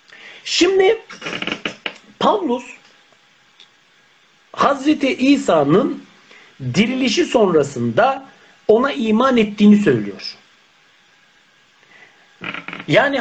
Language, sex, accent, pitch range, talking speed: Turkish, male, native, 175-250 Hz, 50 wpm